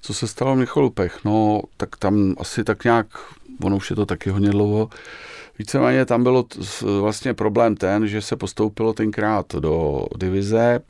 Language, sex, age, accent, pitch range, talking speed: Czech, male, 40-59, native, 95-105 Hz, 160 wpm